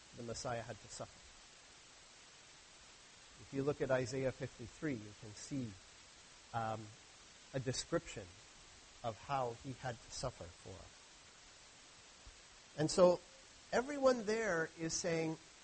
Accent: American